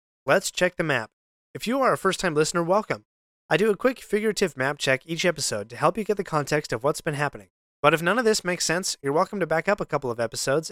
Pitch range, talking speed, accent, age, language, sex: 130-175 Hz, 260 wpm, American, 20-39, English, male